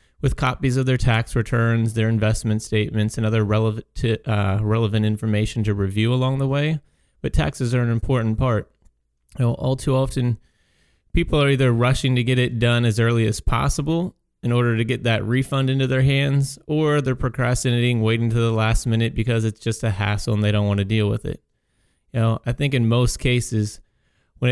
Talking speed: 200 wpm